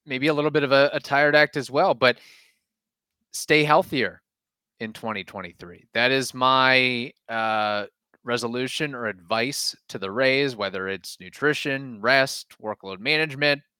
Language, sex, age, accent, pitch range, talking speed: English, male, 30-49, American, 110-140 Hz, 140 wpm